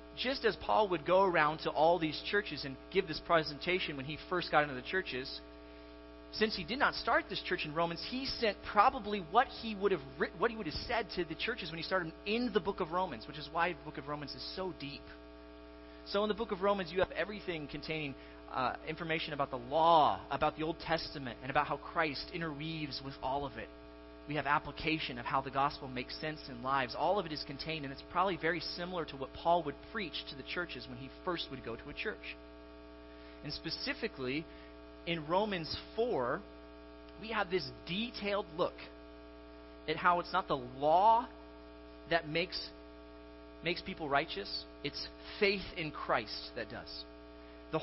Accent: American